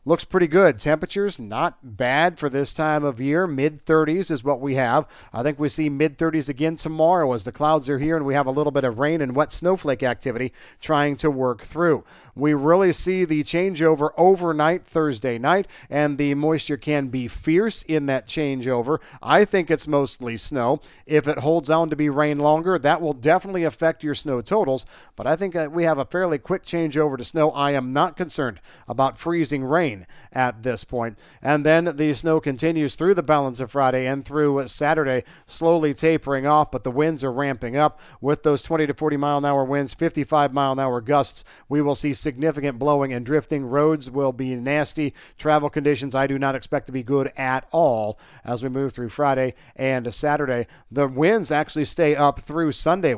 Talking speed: 195 wpm